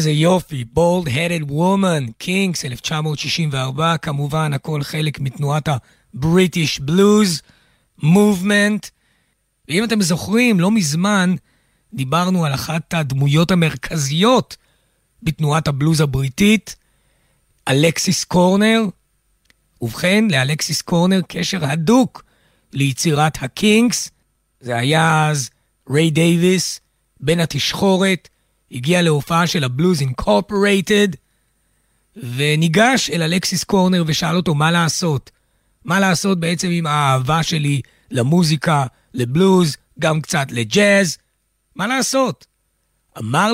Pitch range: 140-185 Hz